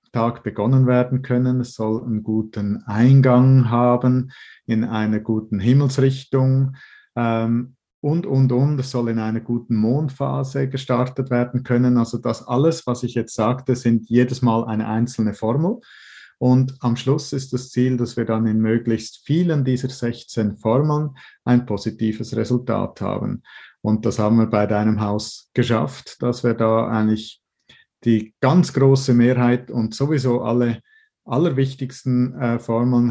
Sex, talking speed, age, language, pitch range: male, 145 wpm, 50-69, German, 110-130 Hz